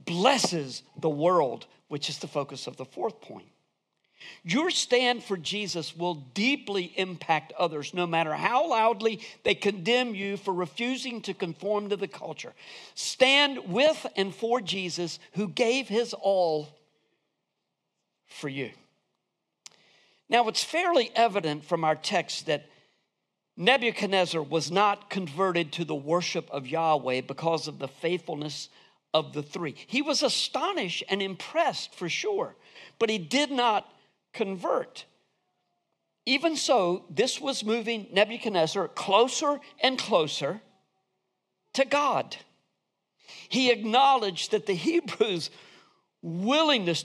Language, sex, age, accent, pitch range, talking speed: English, male, 50-69, American, 170-240 Hz, 120 wpm